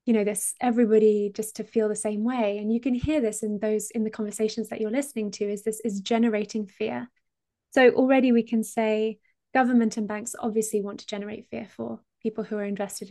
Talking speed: 215 wpm